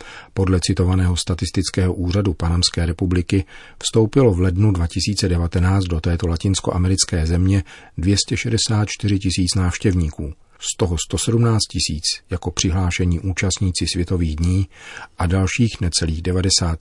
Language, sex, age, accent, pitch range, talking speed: Czech, male, 40-59, native, 85-100 Hz, 105 wpm